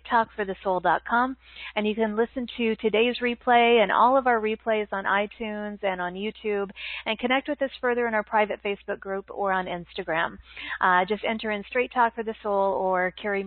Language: English